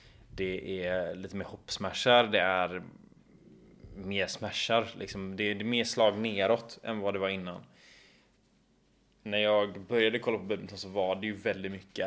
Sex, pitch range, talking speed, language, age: male, 95-110 Hz, 160 wpm, Swedish, 20-39